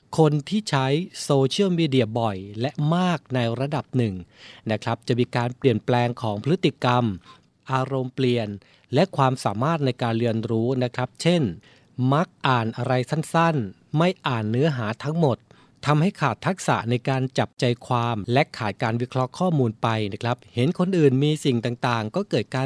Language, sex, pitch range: Thai, male, 115-145 Hz